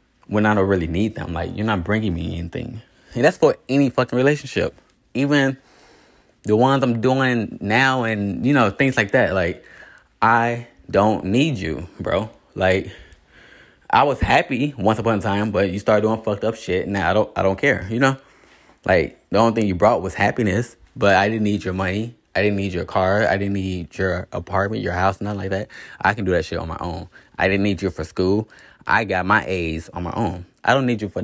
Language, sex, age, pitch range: English, male, 20-39, 95-115 Hz